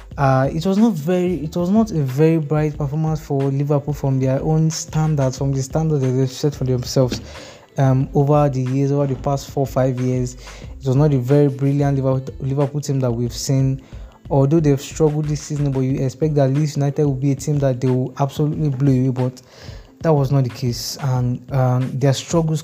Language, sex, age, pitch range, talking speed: English, male, 20-39, 130-150 Hz, 205 wpm